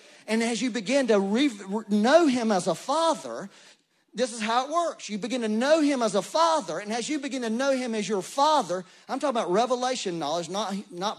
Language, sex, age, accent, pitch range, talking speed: English, male, 40-59, American, 220-300 Hz, 215 wpm